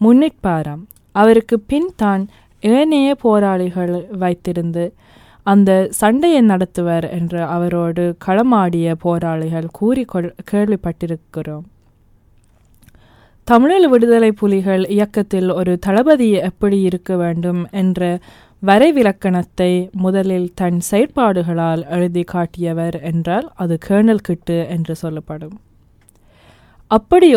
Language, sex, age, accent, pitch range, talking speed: Tamil, female, 20-39, native, 165-210 Hz, 90 wpm